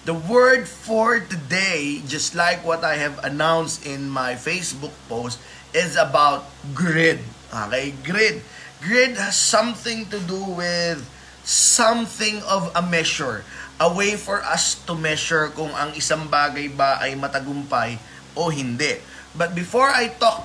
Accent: native